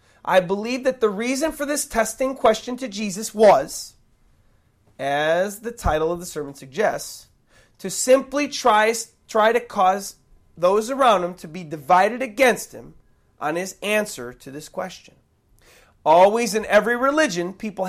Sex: male